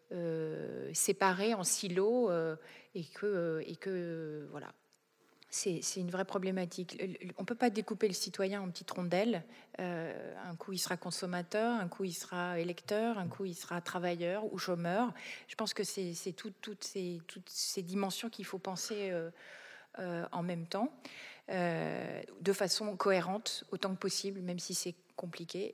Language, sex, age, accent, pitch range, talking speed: French, female, 30-49, French, 175-205 Hz, 170 wpm